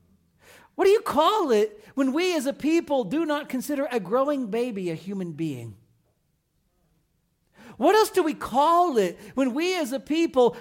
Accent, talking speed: American, 170 wpm